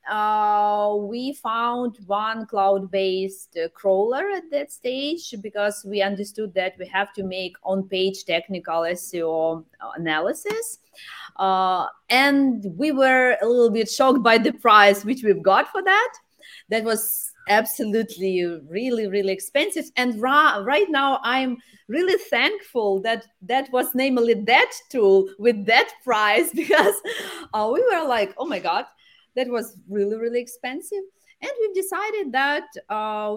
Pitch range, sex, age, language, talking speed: 200-260 Hz, female, 30-49, English, 140 wpm